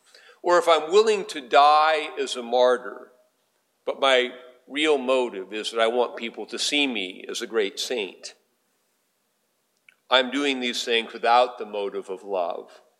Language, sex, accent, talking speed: English, male, American, 155 wpm